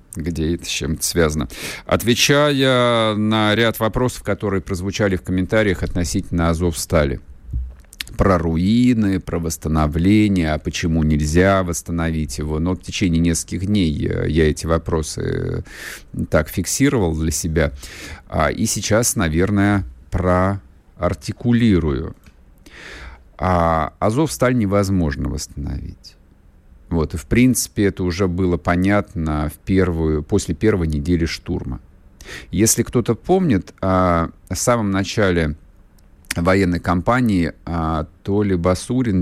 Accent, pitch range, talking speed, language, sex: native, 80-100 Hz, 110 wpm, Russian, male